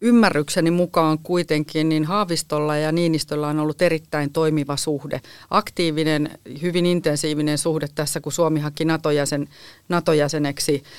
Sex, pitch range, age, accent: female, 150-170 Hz, 40-59, native